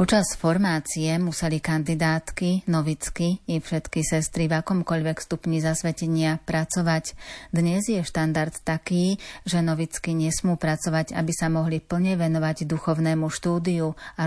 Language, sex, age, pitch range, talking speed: Slovak, female, 30-49, 155-170 Hz, 120 wpm